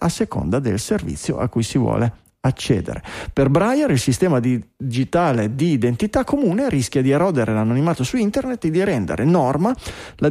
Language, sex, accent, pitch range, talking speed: Italian, male, native, 110-135 Hz, 165 wpm